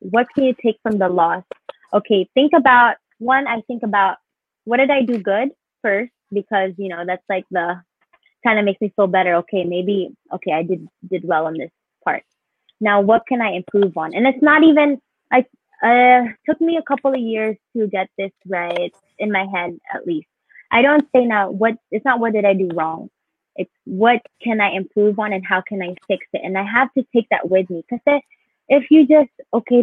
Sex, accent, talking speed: female, American, 215 wpm